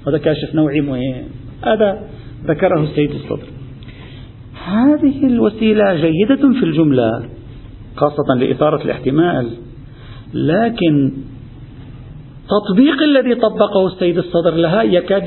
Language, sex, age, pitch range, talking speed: Arabic, male, 50-69, 135-205 Hz, 95 wpm